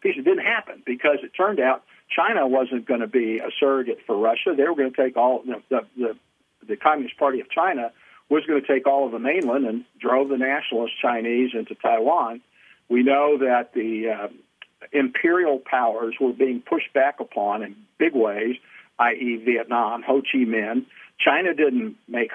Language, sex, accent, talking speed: English, male, American, 185 wpm